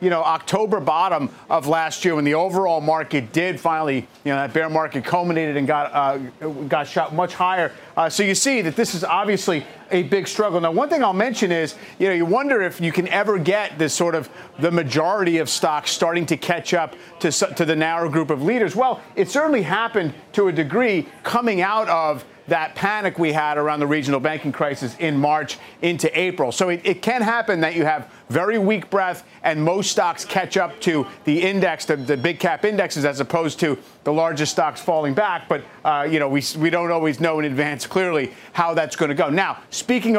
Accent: American